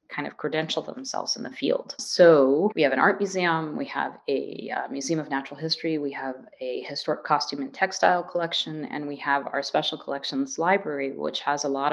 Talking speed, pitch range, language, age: 200 wpm, 140-180 Hz, English, 30-49